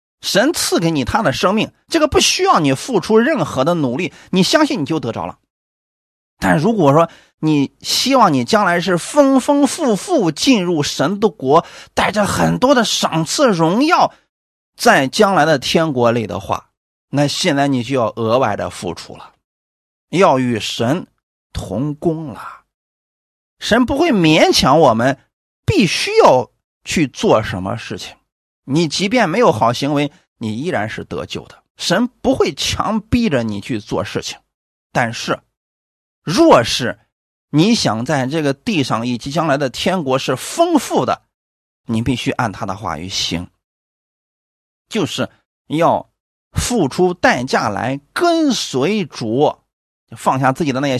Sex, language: male, Chinese